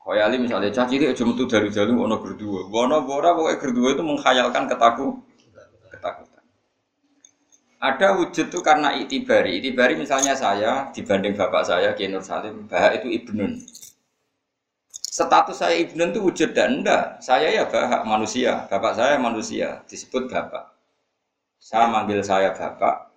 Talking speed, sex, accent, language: 130 wpm, male, native, Indonesian